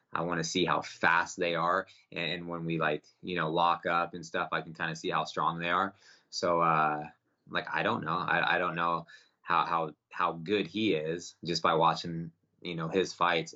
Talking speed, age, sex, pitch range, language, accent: 220 wpm, 20-39, male, 80-95 Hz, English, American